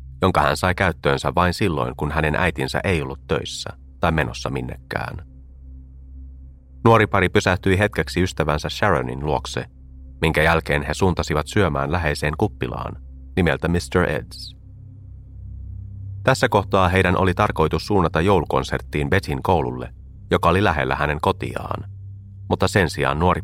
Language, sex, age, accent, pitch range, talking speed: Finnish, male, 30-49, native, 70-95 Hz, 130 wpm